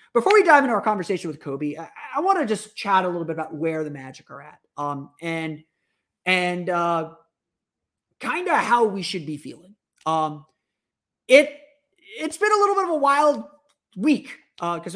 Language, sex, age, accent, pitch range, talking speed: English, male, 30-49, American, 160-240 Hz, 190 wpm